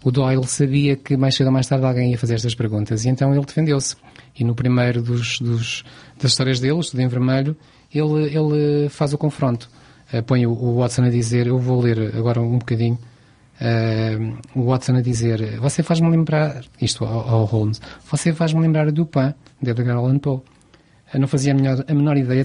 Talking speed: 185 wpm